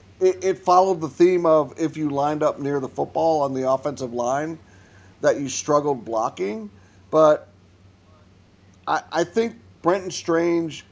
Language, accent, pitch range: English, American, 130-175 Hz